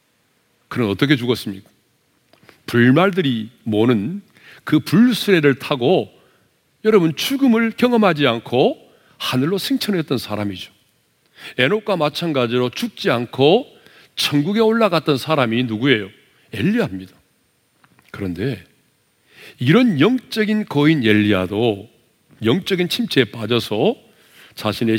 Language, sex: Korean, male